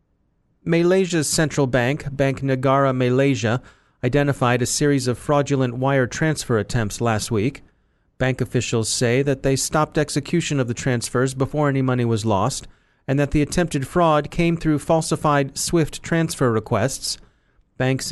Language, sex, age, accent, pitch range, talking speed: English, male, 40-59, American, 125-155 Hz, 140 wpm